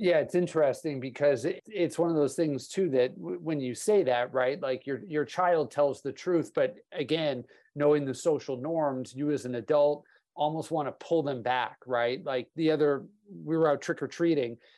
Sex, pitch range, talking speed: male, 140-180 Hz, 200 wpm